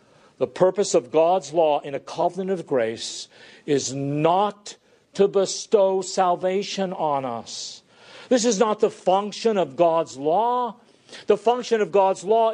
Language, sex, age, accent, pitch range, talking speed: English, male, 50-69, American, 180-235 Hz, 145 wpm